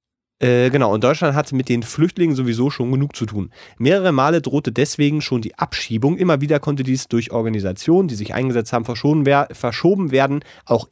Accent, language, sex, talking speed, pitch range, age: German, German, male, 180 wpm, 120-160 Hz, 30-49